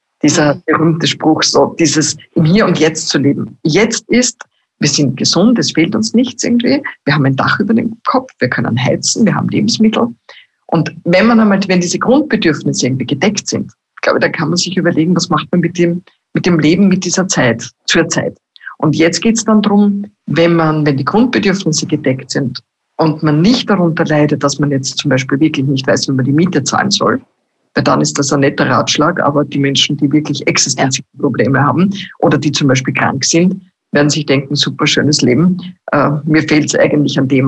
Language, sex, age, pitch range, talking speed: German, female, 50-69, 145-190 Hz, 205 wpm